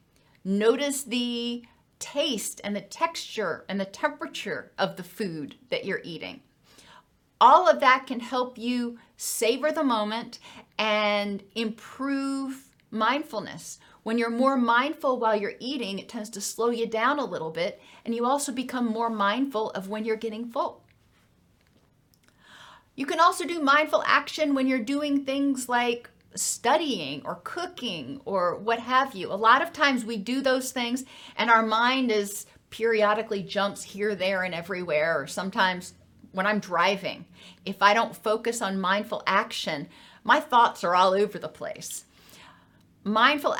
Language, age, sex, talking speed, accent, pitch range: English, 40-59, female, 150 wpm, American, 205-270 Hz